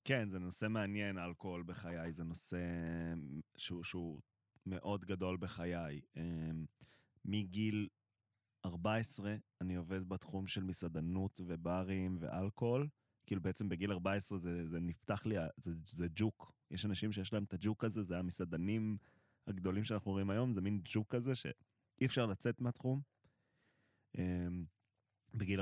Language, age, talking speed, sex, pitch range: Hebrew, 20-39, 135 wpm, male, 90-105 Hz